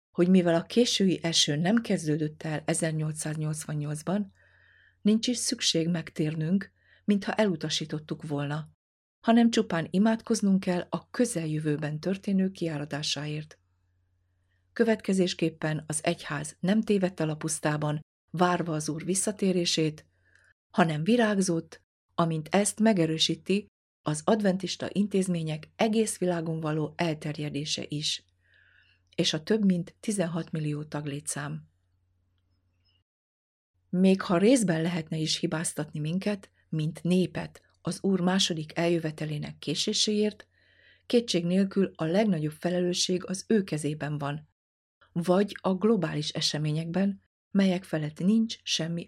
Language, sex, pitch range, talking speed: Hungarian, female, 150-190 Hz, 105 wpm